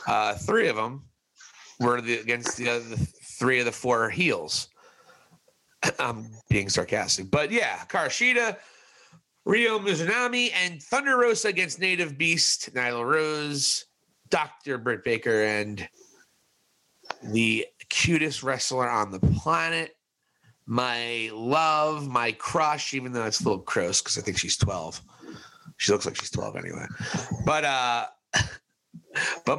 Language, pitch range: English, 115-155 Hz